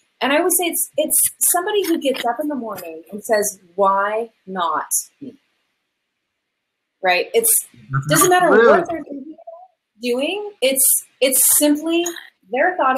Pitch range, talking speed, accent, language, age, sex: 215-300 Hz, 140 wpm, American, English, 30-49, female